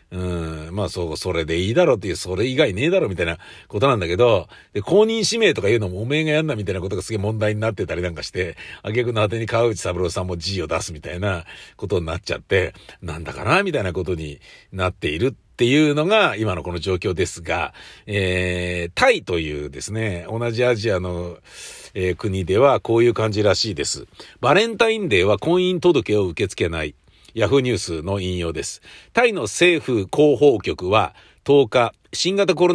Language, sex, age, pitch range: Japanese, male, 50-69, 95-150 Hz